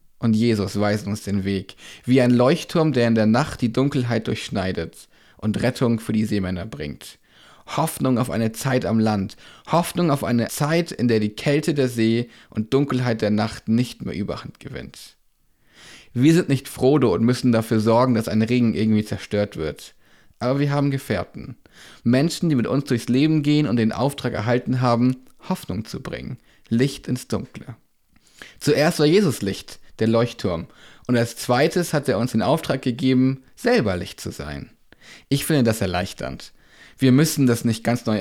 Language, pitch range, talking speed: German, 110-130 Hz, 175 wpm